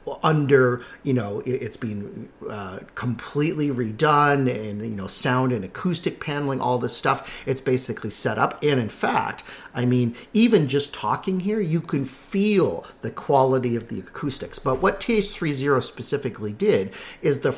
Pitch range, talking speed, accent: 120-145 Hz, 165 wpm, American